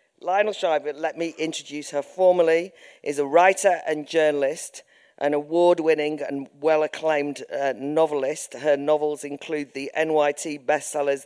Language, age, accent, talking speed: English, 40-59, British, 125 wpm